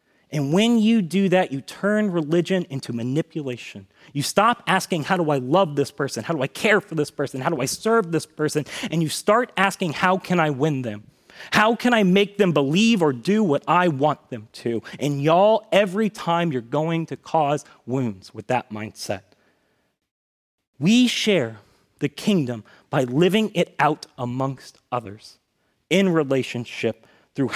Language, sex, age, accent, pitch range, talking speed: English, male, 30-49, American, 125-185 Hz, 170 wpm